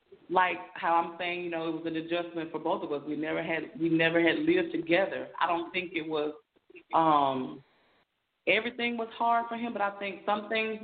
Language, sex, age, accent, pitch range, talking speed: English, female, 30-49, American, 160-205 Hz, 210 wpm